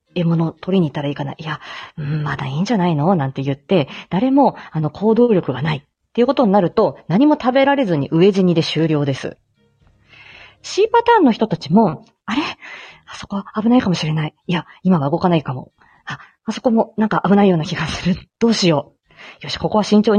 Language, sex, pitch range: Japanese, female, 155-235 Hz